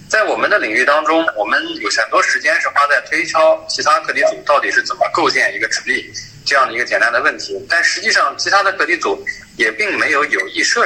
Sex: male